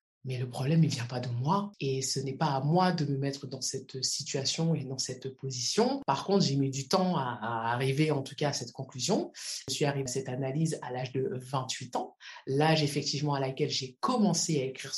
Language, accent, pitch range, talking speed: French, French, 135-170 Hz, 230 wpm